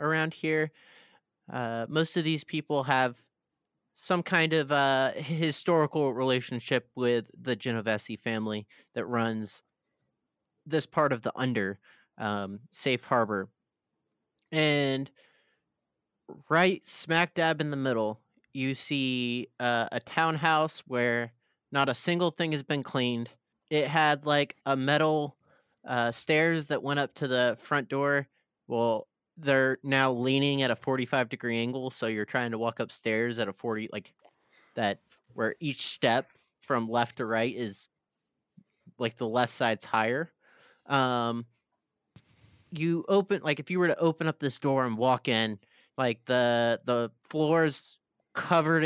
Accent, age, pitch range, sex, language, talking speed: American, 30-49, 120-155 Hz, male, English, 140 wpm